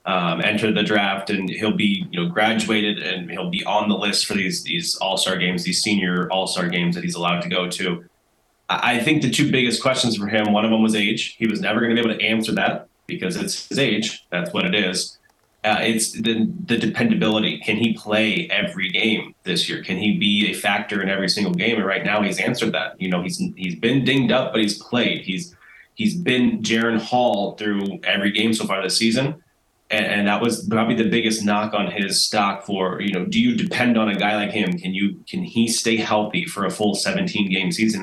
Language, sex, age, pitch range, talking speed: English, male, 20-39, 100-115 Hz, 230 wpm